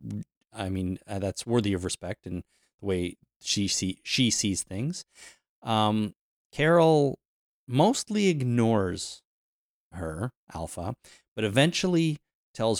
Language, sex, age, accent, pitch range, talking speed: English, male, 30-49, American, 95-130 Hz, 110 wpm